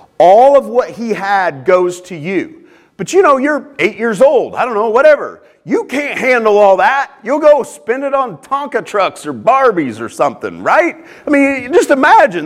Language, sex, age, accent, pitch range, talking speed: English, male, 40-59, American, 205-275 Hz, 195 wpm